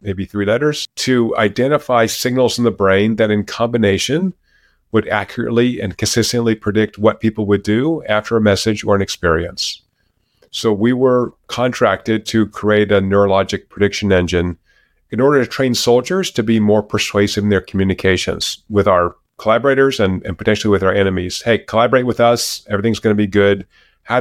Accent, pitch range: American, 100-120 Hz